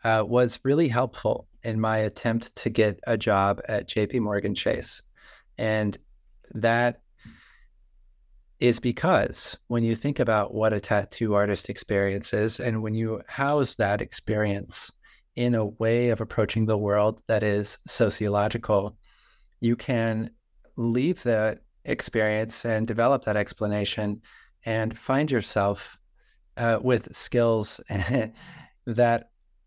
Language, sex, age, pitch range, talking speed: English, male, 30-49, 105-120 Hz, 120 wpm